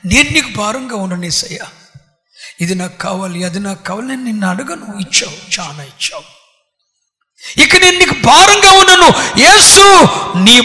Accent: native